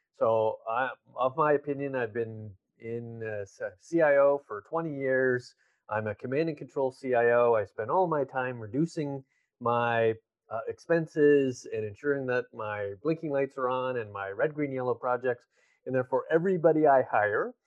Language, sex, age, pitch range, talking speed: English, male, 30-49, 115-145 Hz, 160 wpm